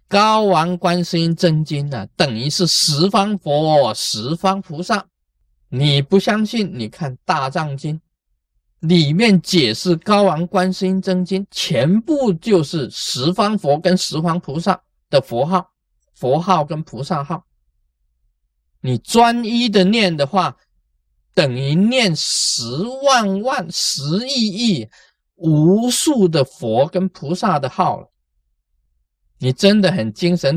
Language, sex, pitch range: Chinese, male, 130-185 Hz